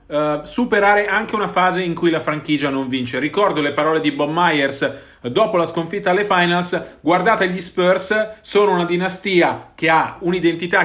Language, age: Italian, 40-59